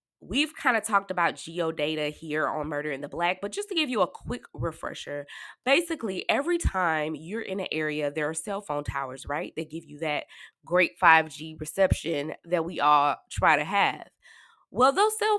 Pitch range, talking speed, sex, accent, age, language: 155-225 Hz, 190 wpm, female, American, 20-39, English